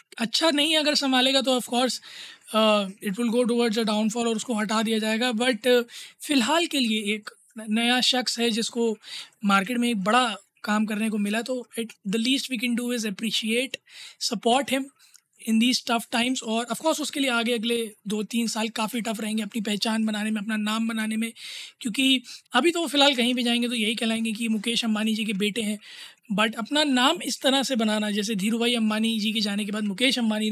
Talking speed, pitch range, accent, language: 205 wpm, 220-255 Hz, native, Hindi